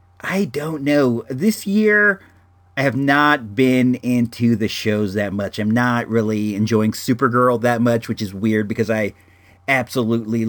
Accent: American